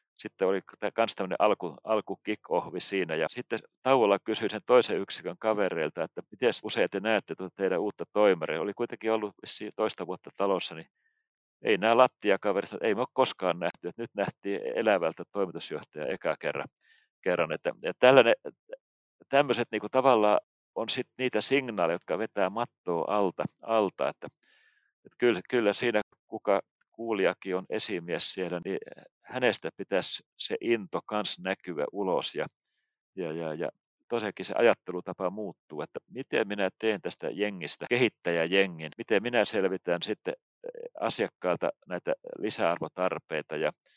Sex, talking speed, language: male, 135 wpm, Finnish